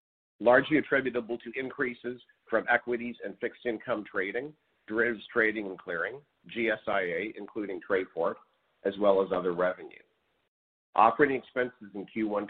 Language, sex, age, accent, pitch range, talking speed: English, male, 50-69, American, 95-120 Hz, 125 wpm